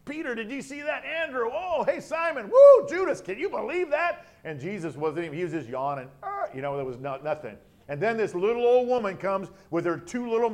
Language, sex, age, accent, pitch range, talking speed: English, male, 50-69, American, 170-245 Hz, 235 wpm